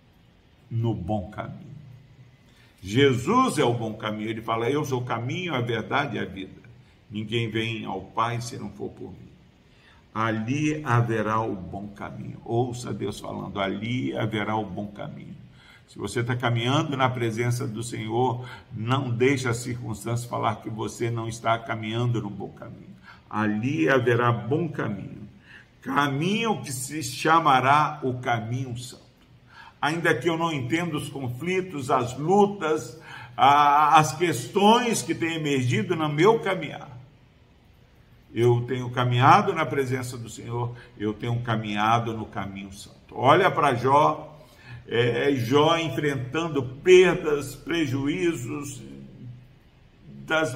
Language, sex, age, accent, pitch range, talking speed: Portuguese, male, 50-69, Brazilian, 110-145 Hz, 135 wpm